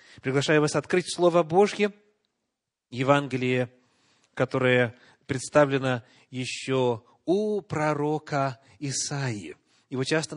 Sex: male